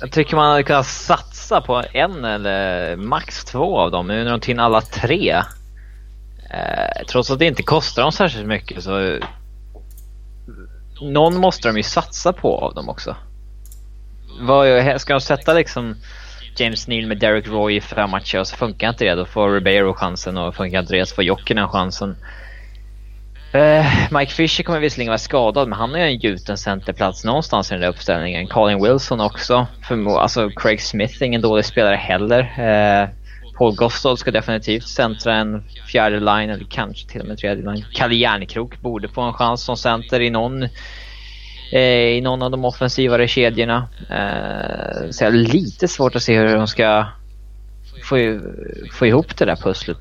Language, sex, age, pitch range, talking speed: Swedish, male, 20-39, 105-125 Hz, 165 wpm